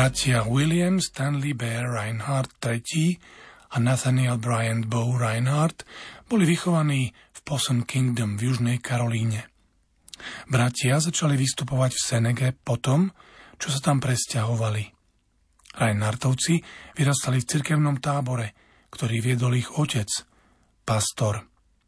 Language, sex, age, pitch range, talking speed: Slovak, male, 40-59, 115-140 Hz, 110 wpm